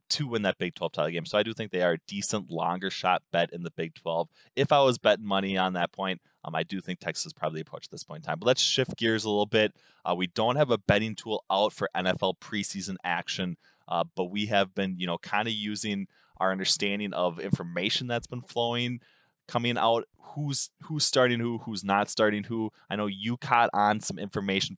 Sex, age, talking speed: male, 20-39, 230 wpm